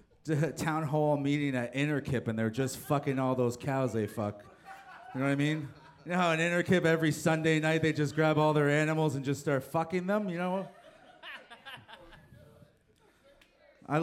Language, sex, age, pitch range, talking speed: English, male, 30-49, 130-200 Hz, 180 wpm